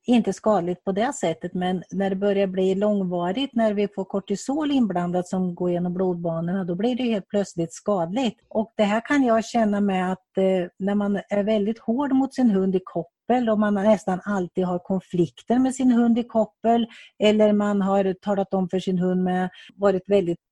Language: English